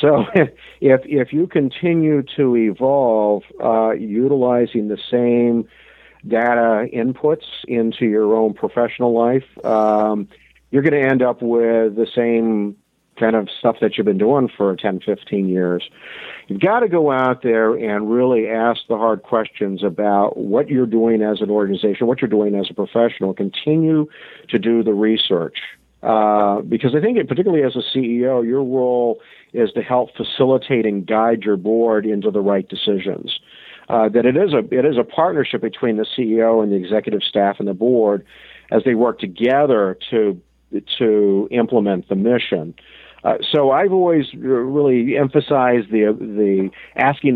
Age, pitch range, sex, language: 50-69, 105-130 Hz, male, English